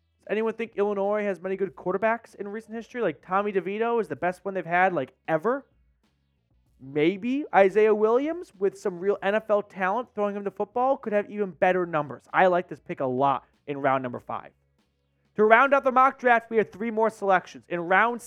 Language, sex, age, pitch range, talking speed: English, male, 30-49, 150-210 Hz, 200 wpm